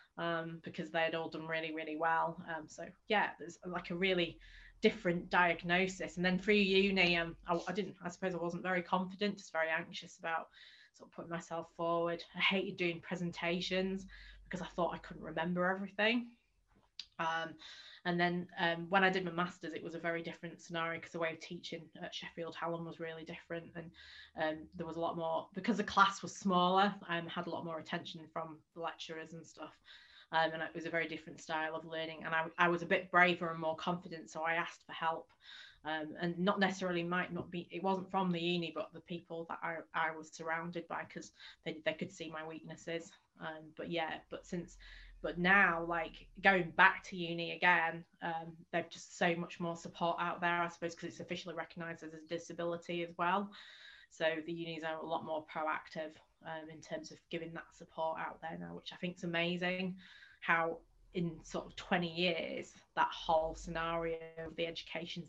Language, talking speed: English, 205 wpm